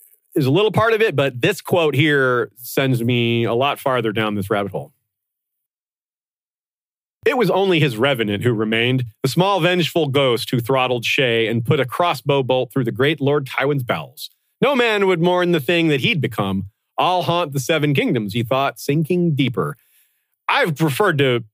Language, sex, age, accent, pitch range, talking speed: English, male, 40-59, American, 115-155 Hz, 180 wpm